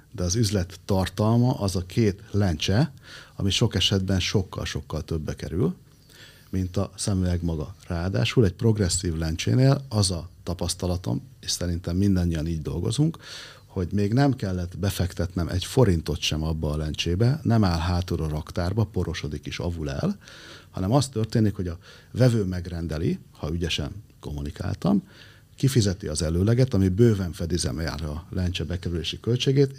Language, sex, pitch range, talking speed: Hungarian, male, 85-115 Hz, 145 wpm